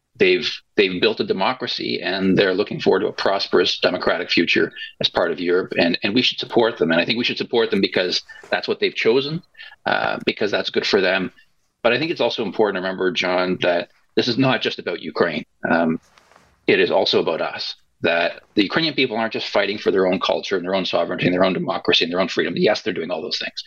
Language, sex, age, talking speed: English, male, 40-59, 240 wpm